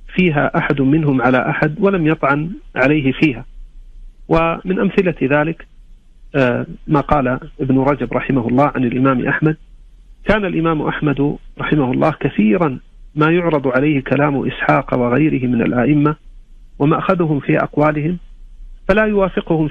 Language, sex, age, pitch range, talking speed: Arabic, male, 40-59, 130-160 Hz, 120 wpm